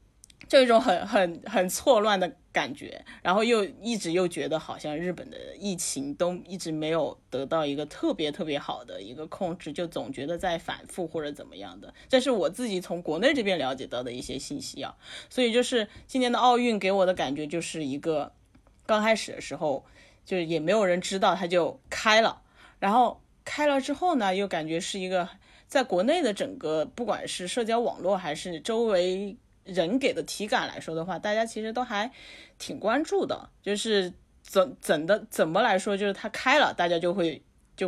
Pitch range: 160-220 Hz